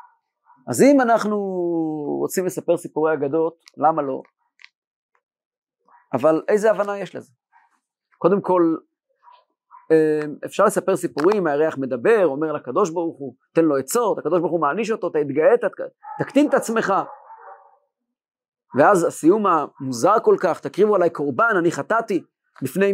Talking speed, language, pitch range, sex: 130 wpm, Hebrew, 160-265 Hz, male